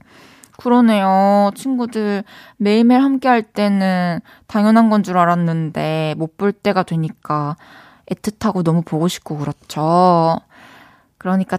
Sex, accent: female, native